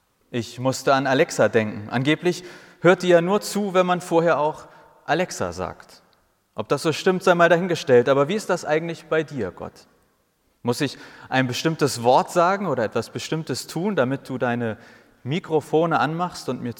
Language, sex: German, male